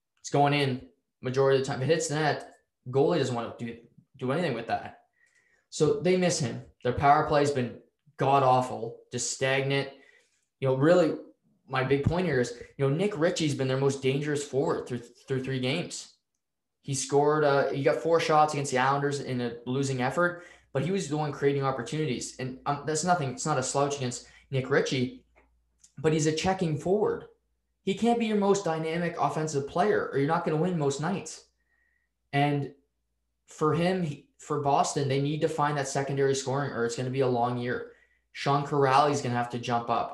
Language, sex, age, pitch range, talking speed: English, male, 10-29, 130-160 Hz, 205 wpm